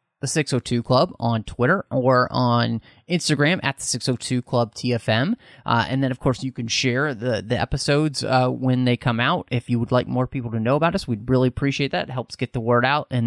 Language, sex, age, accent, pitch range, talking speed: English, male, 30-49, American, 115-145 Hz, 225 wpm